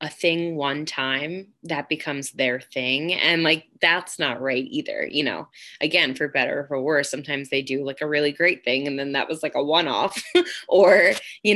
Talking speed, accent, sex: 205 wpm, American, female